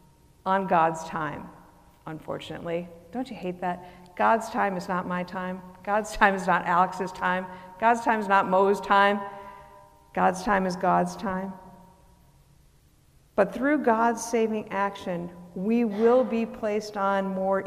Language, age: English, 50-69